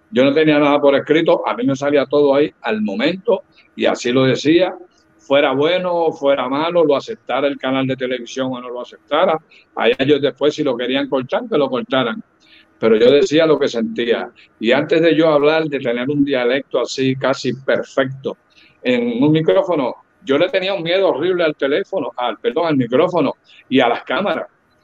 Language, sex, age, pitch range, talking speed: Spanish, male, 60-79, 130-175 Hz, 195 wpm